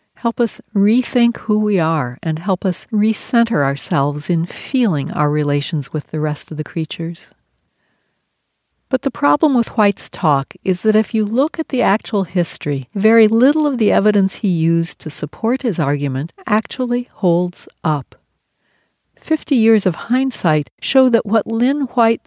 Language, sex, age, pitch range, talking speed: English, female, 60-79, 165-230 Hz, 160 wpm